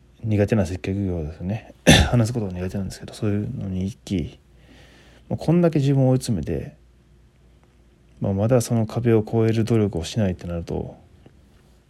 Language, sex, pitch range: Japanese, male, 70-110 Hz